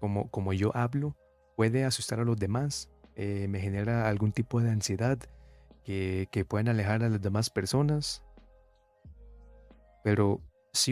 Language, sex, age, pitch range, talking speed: Spanish, male, 30-49, 105-130 Hz, 145 wpm